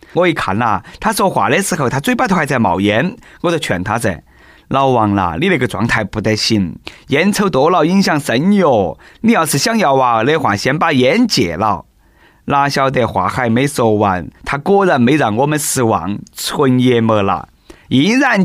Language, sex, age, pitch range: Chinese, male, 20-39, 115-170 Hz